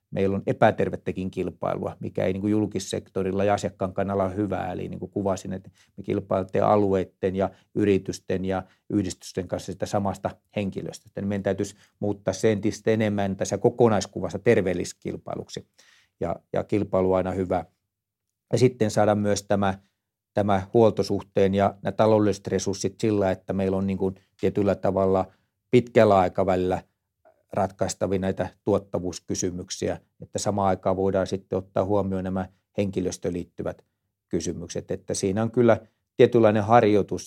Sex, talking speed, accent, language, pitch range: male, 135 wpm, native, Finnish, 95-105 Hz